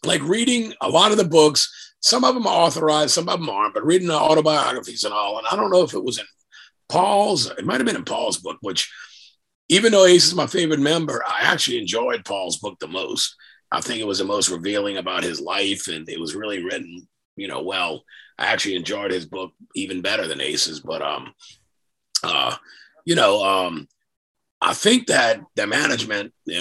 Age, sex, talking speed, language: 50-69, male, 205 wpm, English